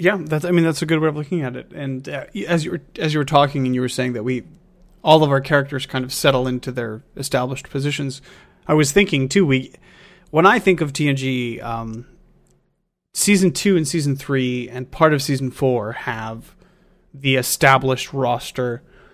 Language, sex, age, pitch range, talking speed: English, male, 30-49, 125-160 Hz, 200 wpm